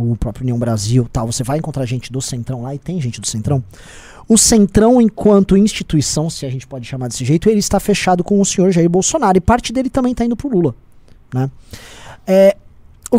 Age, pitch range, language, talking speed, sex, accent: 20-39, 135-210 Hz, Portuguese, 210 wpm, male, Brazilian